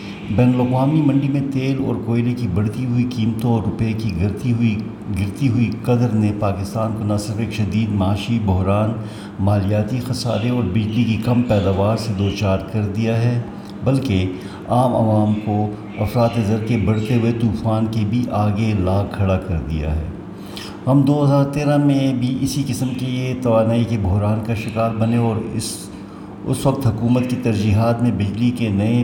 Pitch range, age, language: 105-120 Hz, 60-79, Urdu